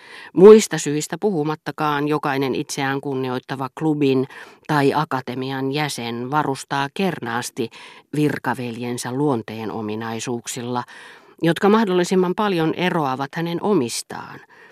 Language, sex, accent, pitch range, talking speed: Finnish, female, native, 130-180 Hz, 85 wpm